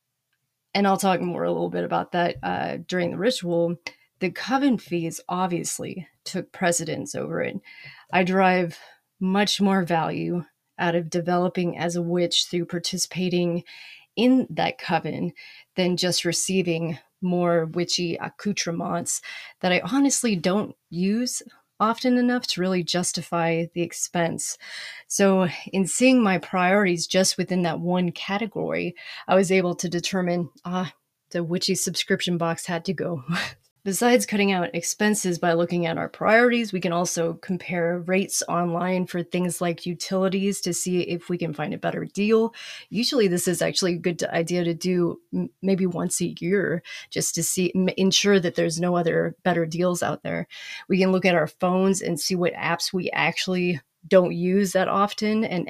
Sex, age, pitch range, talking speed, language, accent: female, 30-49, 170-190 Hz, 165 wpm, English, American